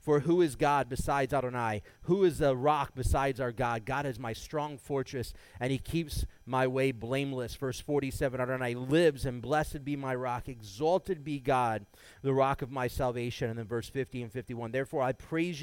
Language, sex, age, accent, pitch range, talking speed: English, male, 30-49, American, 125-155 Hz, 190 wpm